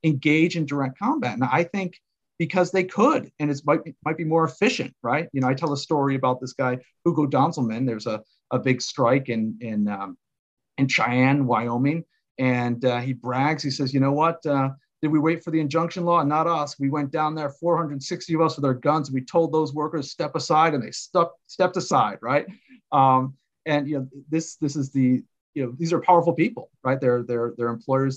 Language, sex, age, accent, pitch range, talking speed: English, male, 40-59, American, 125-160 Hz, 215 wpm